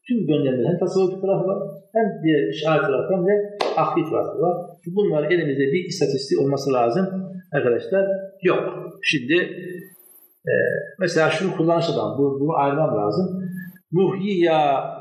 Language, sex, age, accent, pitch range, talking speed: Turkish, male, 60-79, native, 150-195 Hz, 130 wpm